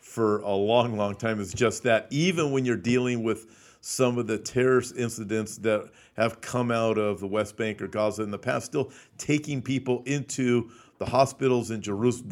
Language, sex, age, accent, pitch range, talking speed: English, male, 50-69, American, 115-140 Hz, 190 wpm